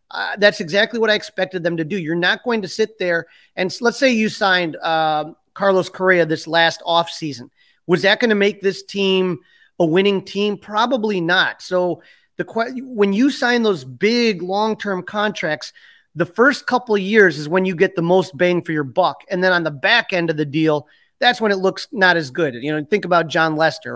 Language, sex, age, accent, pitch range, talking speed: English, male, 30-49, American, 170-210 Hz, 220 wpm